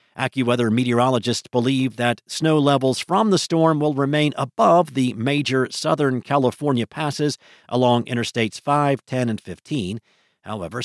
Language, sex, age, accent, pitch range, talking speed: English, male, 50-69, American, 120-155 Hz, 135 wpm